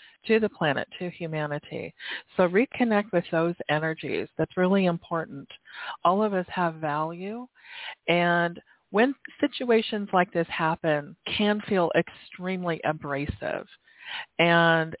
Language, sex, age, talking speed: English, female, 50-69, 115 wpm